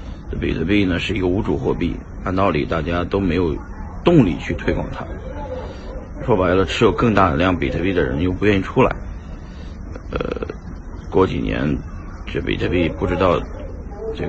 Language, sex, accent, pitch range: Chinese, male, native, 80-90 Hz